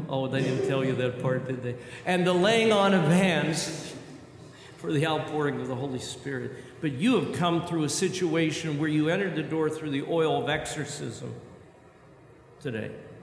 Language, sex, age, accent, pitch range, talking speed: English, male, 50-69, American, 145-180 Hz, 180 wpm